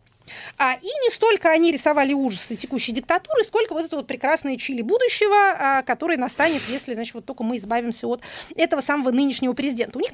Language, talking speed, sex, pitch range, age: Russian, 190 wpm, female, 240-335 Hz, 30-49